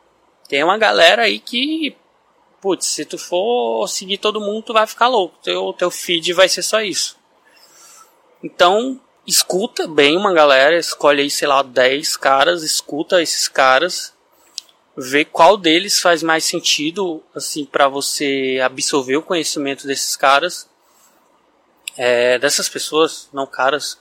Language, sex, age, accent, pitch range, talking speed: Portuguese, male, 20-39, Brazilian, 145-190 Hz, 140 wpm